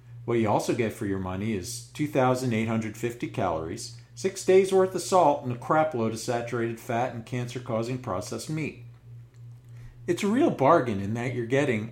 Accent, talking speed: American, 170 wpm